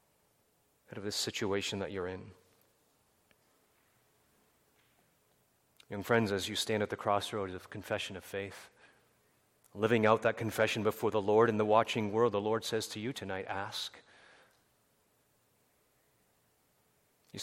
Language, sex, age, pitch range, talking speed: English, male, 30-49, 105-145 Hz, 125 wpm